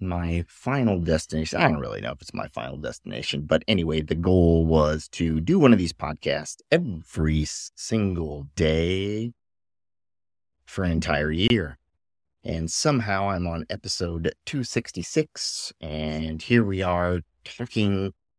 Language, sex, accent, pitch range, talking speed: English, male, American, 80-95 Hz, 135 wpm